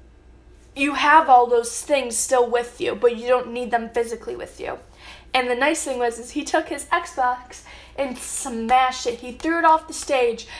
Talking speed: 200 wpm